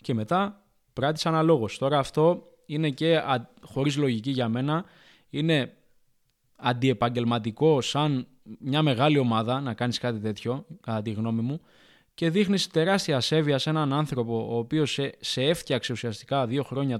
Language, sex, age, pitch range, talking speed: Greek, male, 20-39, 120-155 Hz, 145 wpm